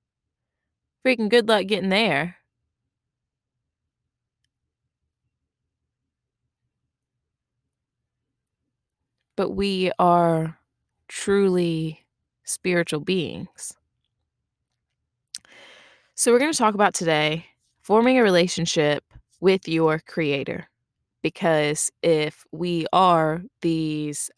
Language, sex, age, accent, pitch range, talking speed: English, female, 20-39, American, 125-180 Hz, 70 wpm